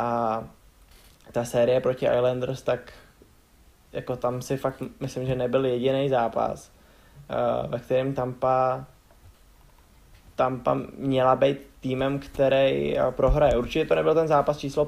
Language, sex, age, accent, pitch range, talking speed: Czech, male, 20-39, native, 120-135 Hz, 120 wpm